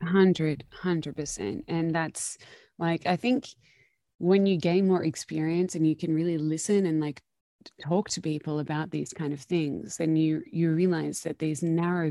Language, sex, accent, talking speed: English, female, Australian, 160 wpm